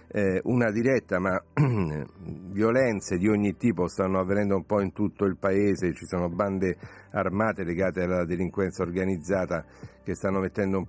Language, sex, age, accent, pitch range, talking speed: Italian, male, 50-69, native, 90-100 Hz, 155 wpm